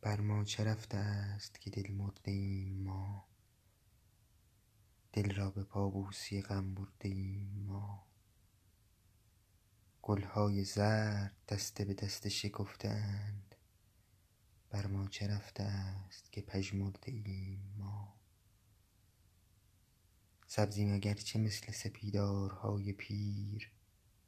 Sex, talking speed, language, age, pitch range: male, 90 wpm, Persian, 20-39, 100-105 Hz